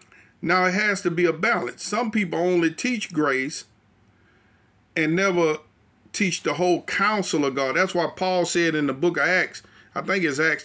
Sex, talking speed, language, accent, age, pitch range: male, 185 wpm, English, American, 40-59, 140-185 Hz